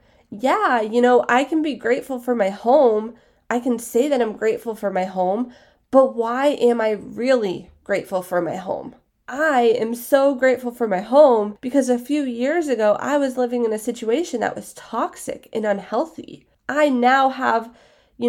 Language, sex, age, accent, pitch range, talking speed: English, female, 20-39, American, 215-265 Hz, 180 wpm